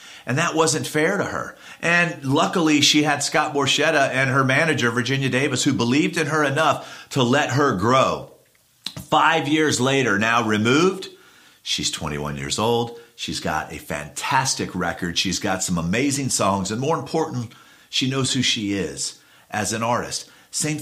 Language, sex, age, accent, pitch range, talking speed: English, male, 50-69, American, 110-140 Hz, 165 wpm